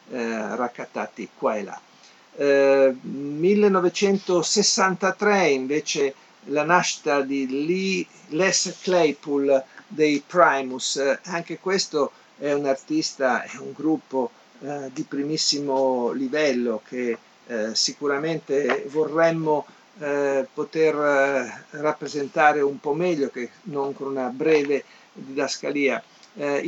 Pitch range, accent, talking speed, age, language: 130-155 Hz, native, 105 wpm, 50-69, Italian